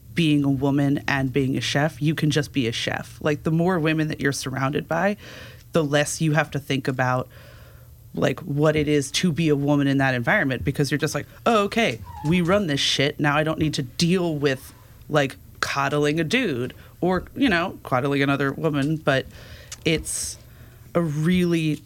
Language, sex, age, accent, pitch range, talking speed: English, female, 30-49, American, 130-150 Hz, 190 wpm